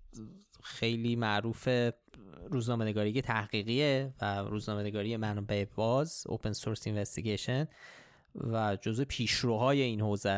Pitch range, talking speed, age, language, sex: 110-135 Hz, 110 wpm, 20-39, Persian, male